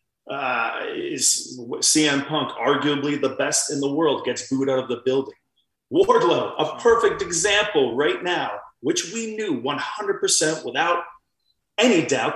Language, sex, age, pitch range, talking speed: English, male, 30-49, 125-155 Hz, 140 wpm